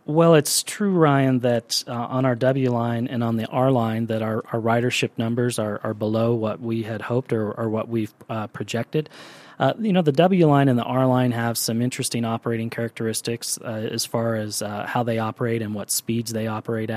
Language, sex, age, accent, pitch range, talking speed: English, male, 30-49, American, 110-125 Hz, 215 wpm